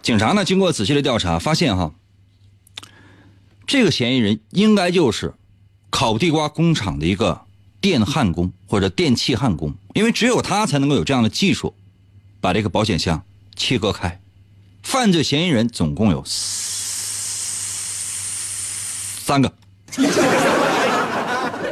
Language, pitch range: Chinese, 95-140 Hz